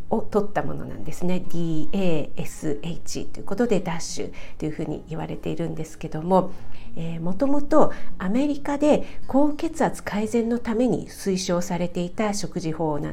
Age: 50-69